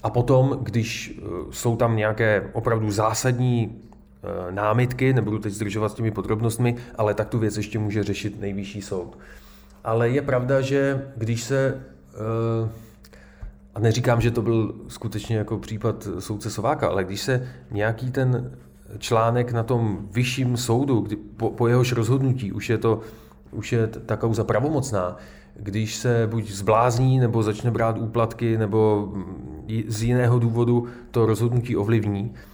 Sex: male